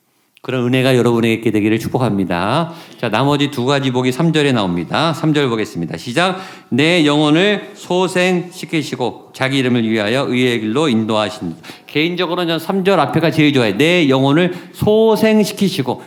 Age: 50-69